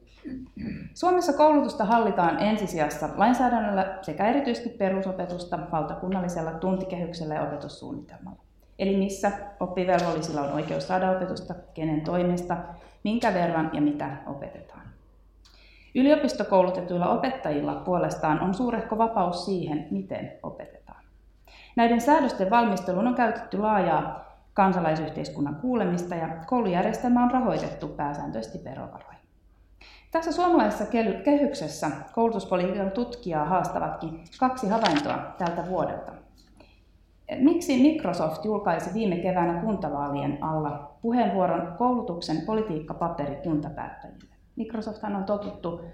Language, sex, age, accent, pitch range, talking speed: Finnish, female, 30-49, native, 165-230 Hz, 95 wpm